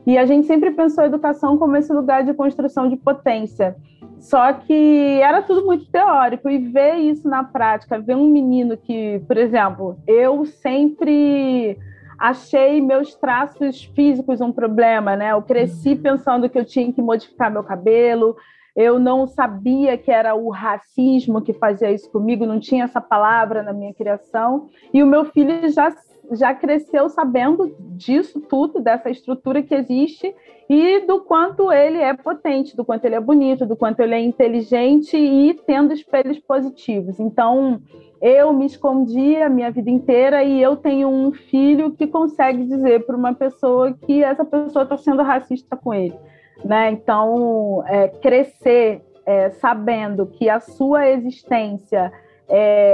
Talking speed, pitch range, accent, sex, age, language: 155 wpm, 230-285 Hz, Brazilian, female, 40-59, Portuguese